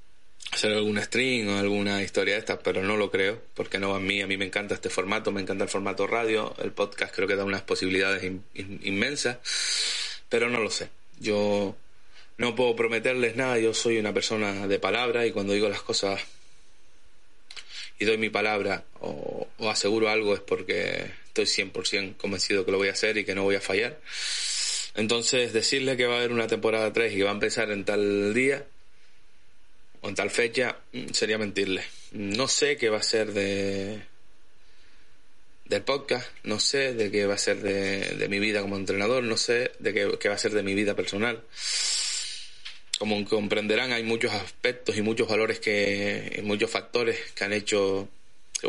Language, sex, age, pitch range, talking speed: Spanish, male, 20-39, 100-115 Hz, 190 wpm